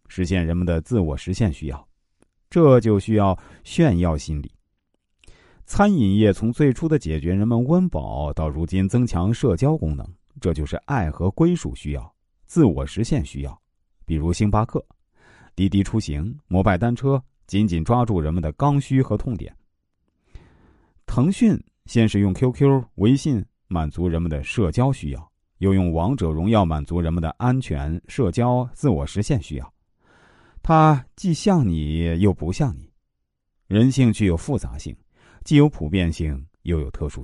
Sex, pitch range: male, 80-120 Hz